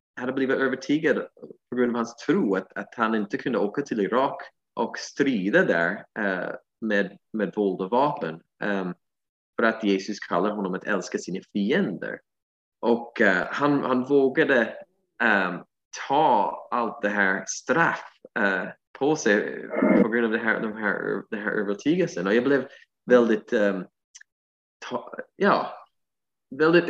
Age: 20-39